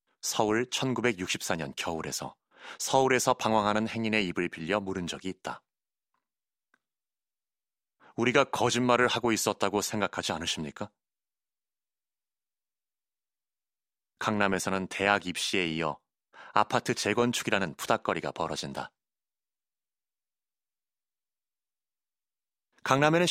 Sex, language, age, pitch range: male, Korean, 30-49, 100-135 Hz